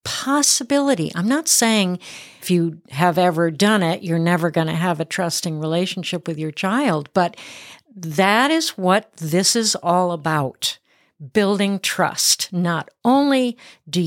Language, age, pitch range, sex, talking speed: English, 60-79, 165-220 Hz, female, 145 wpm